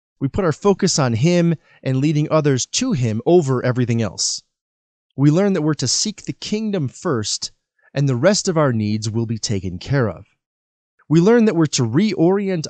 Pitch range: 115-165 Hz